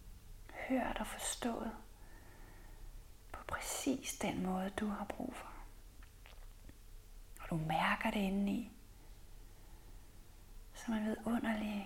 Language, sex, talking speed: Danish, female, 100 wpm